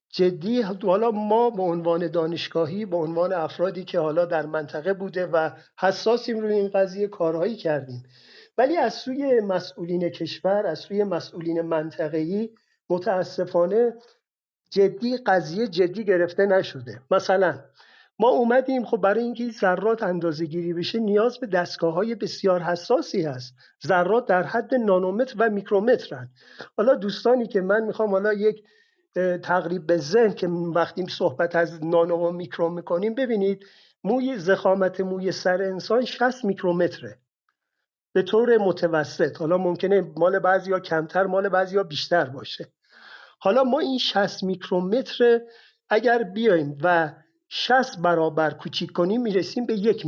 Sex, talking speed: male, 140 wpm